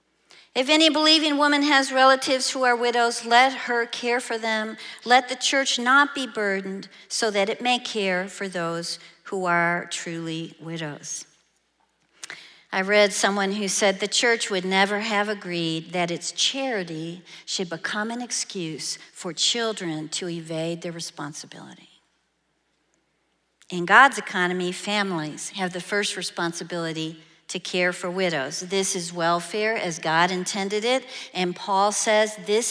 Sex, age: female, 50-69